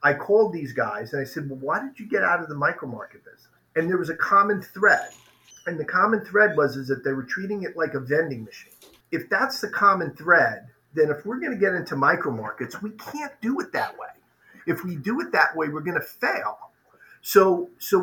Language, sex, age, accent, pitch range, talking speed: English, male, 40-59, American, 145-190 Hz, 235 wpm